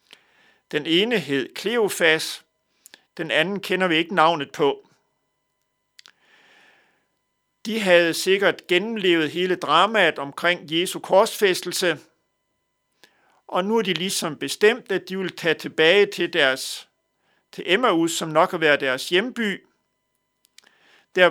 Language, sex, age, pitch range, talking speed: Danish, male, 60-79, 155-205 Hz, 120 wpm